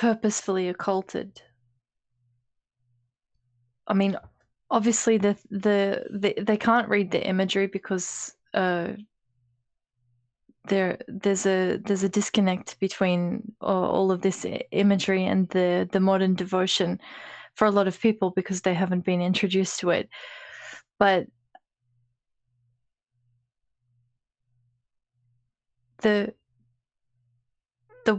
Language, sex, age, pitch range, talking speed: English, female, 20-39, 120-200 Hz, 100 wpm